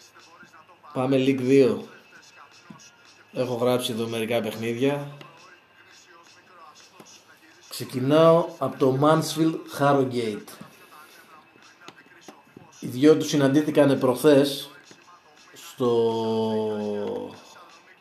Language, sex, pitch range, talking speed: Greek, male, 120-145 Hz, 65 wpm